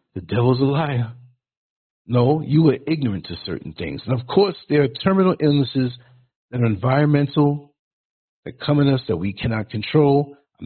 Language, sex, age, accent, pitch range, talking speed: English, male, 60-79, American, 125-170 Hz, 170 wpm